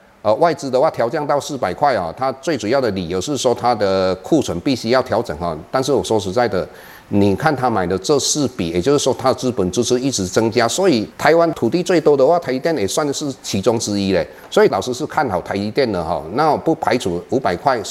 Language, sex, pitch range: Chinese, male, 100-135 Hz